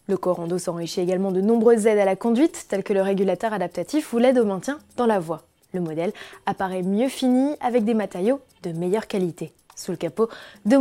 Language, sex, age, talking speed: French, female, 20-39, 205 wpm